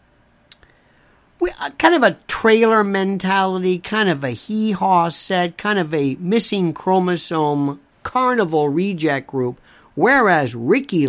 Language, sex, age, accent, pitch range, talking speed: English, male, 50-69, American, 160-215 Hz, 115 wpm